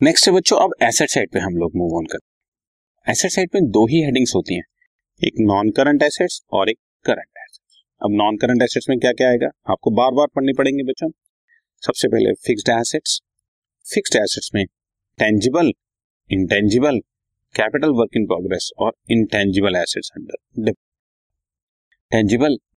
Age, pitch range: 30-49, 100-125 Hz